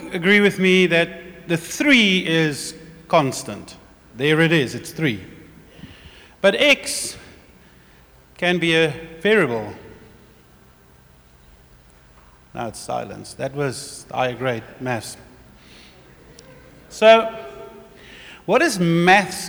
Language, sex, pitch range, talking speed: English, male, 125-190 Hz, 95 wpm